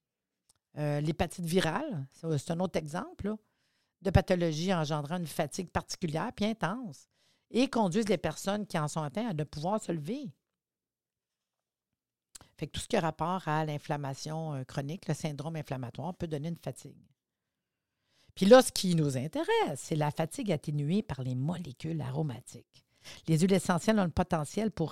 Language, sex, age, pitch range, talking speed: French, female, 50-69, 155-195 Hz, 160 wpm